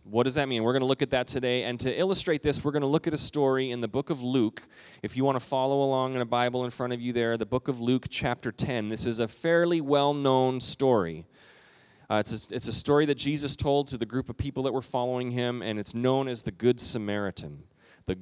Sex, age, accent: male, 30-49, American